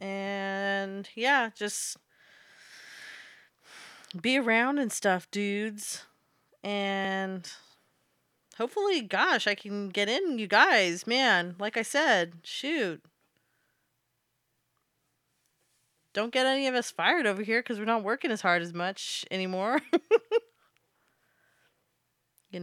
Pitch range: 185-230 Hz